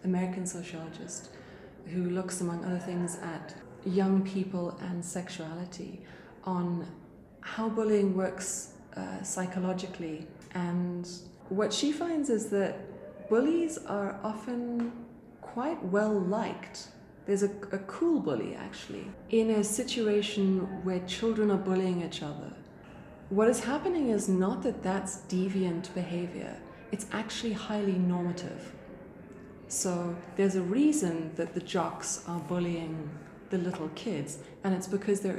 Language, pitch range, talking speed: English, 180-215 Hz, 125 wpm